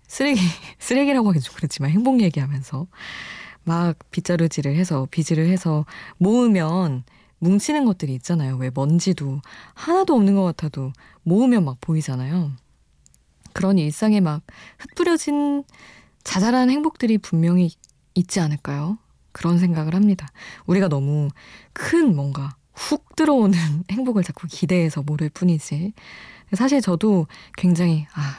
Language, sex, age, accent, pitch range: Korean, female, 20-39, native, 150-205 Hz